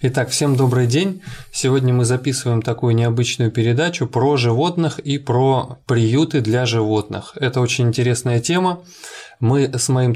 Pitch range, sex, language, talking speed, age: 115-140 Hz, male, Russian, 140 wpm, 20-39